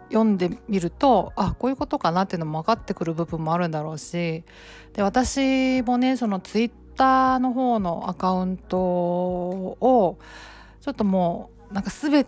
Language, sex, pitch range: Japanese, female, 175-245 Hz